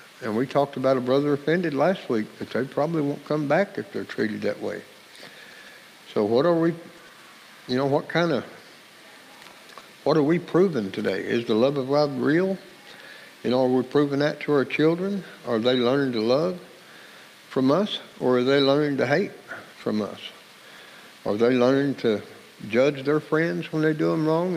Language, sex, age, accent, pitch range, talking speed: English, male, 60-79, American, 130-155 Hz, 185 wpm